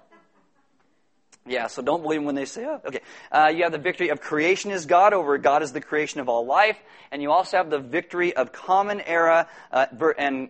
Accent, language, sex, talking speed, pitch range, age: American, English, male, 210 wpm, 150-200 Hz, 30-49